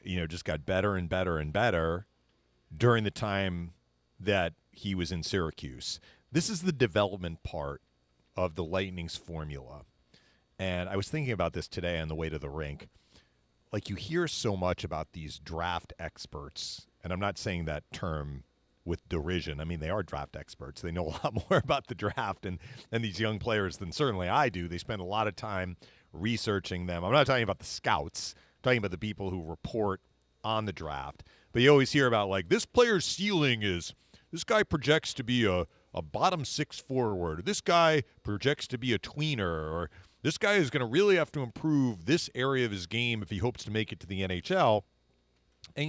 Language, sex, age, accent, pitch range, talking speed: English, male, 40-59, American, 80-125 Hz, 205 wpm